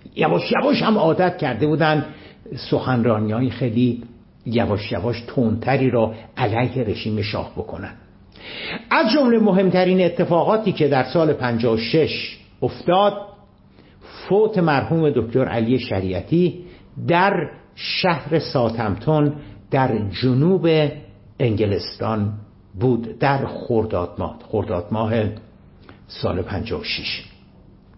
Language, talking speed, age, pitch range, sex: Persian, 95 wpm, 60-79, 105-155 Hz, male